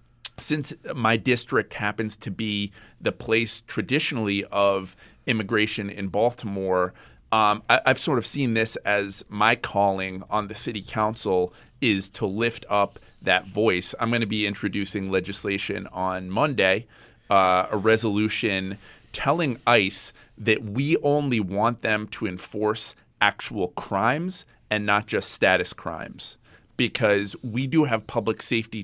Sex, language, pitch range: male, English, 95-115 Hz